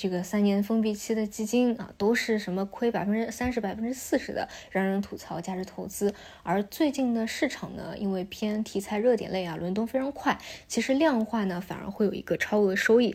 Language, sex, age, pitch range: Chinese, female, 20-39, 195-245 Hz